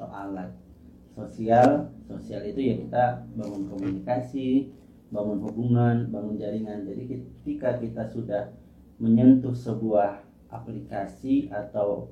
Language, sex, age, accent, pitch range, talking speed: Indonesian, male, 30-49, native, 105-125 Hz, 105 wpm